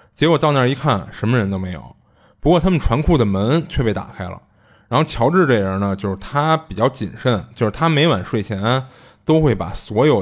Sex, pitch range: male, 100-130 Hz